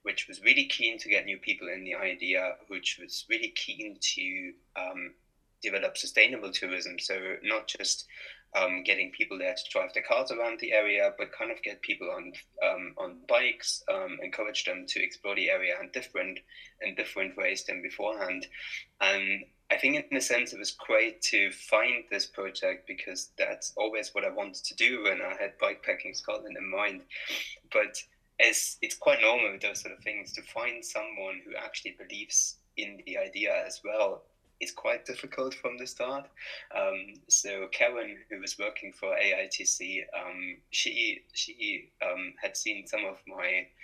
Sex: male